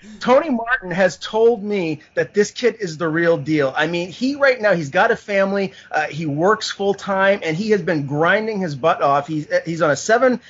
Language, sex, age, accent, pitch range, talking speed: English, male, 30-49, American, 155-195 Hz, 225 wpm